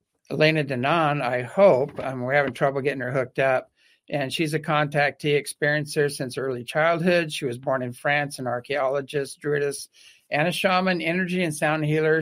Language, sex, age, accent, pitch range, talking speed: English, male, 60-79, American, 135-155 Hz, 170 wpm